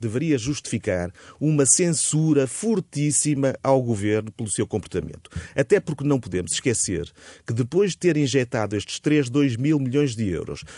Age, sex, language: 30-49, male, Portuguese